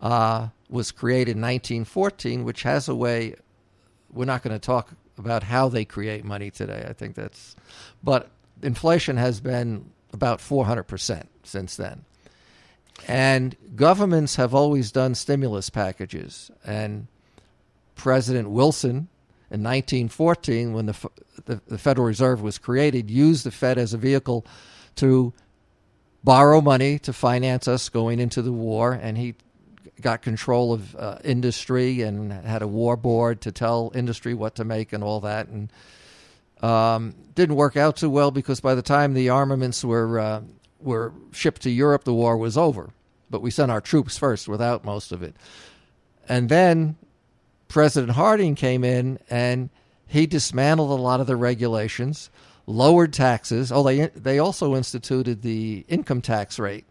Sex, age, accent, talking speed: male, 50-69, American, 155 wpm